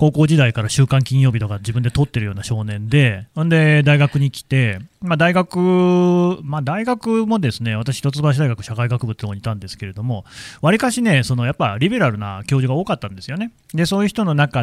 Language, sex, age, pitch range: Japanese, male, 30-49, 115-170 Hz